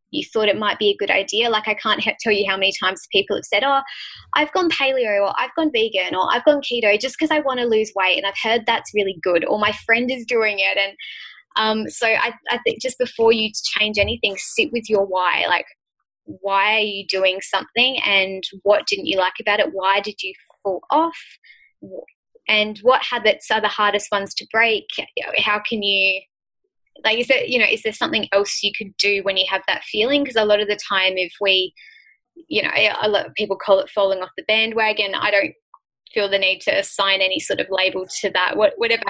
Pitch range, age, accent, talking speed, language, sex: 195-245 Hz, 20-39, Australian, 225 wpm, English, female